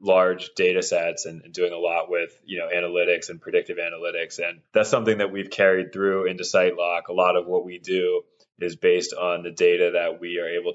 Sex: male